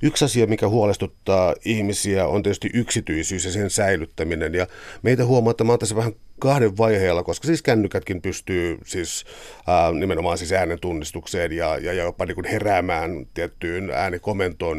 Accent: native